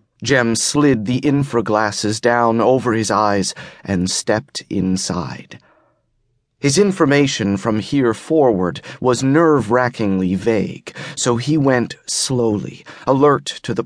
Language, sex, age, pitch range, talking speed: English, male, 30-49, 110-140 Hz, 115 wpm